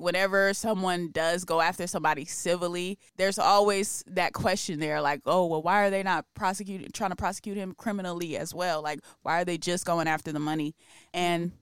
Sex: female